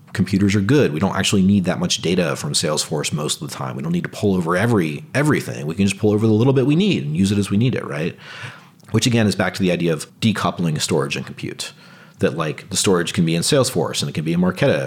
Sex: male